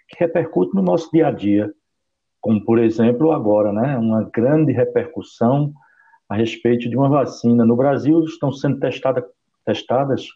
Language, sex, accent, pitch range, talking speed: Portuguese, male, Brazilian, 100-140 Hz, 145 wpm